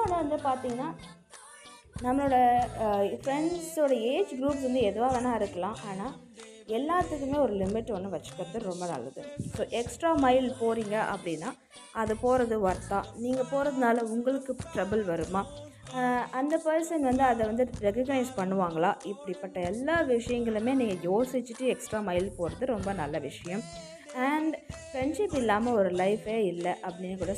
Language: Tamil